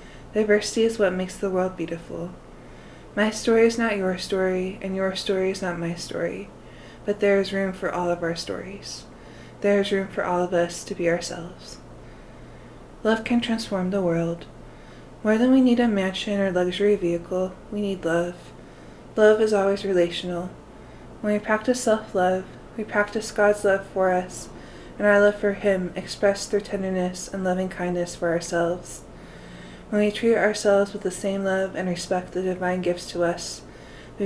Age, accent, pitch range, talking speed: 20-39, American, 180-210 Hz, 175 wpm